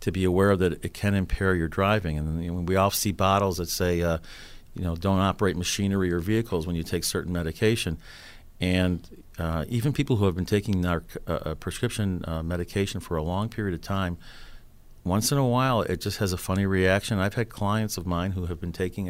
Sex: male